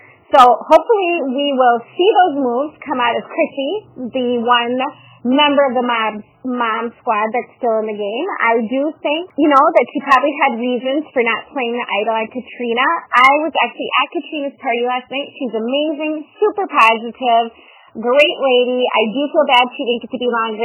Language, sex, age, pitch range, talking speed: English, female, 30-49, 230-285 Hz, 190 wpm